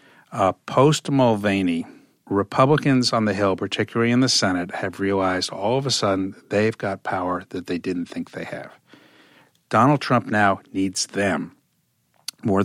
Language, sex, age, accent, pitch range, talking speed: English, male, 50-69, American, 95-130 Hz, 150 wpm